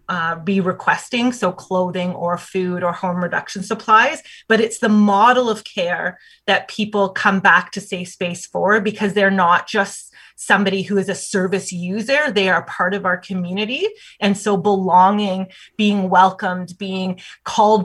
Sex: female